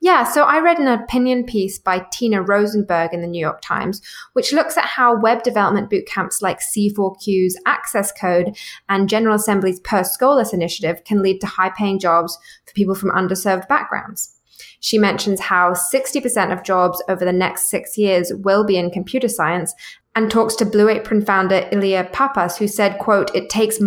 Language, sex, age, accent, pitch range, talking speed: English, female, 20-39, British, 180-225 Hz, 180 wpm